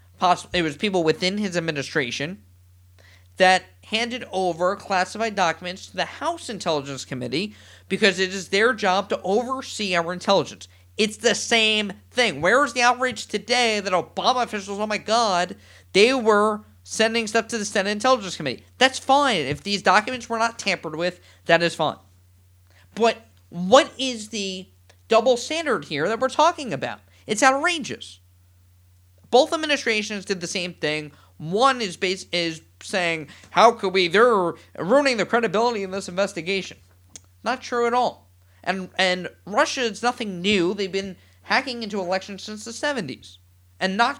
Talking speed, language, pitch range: 155 wpm, English, 145-230 Hz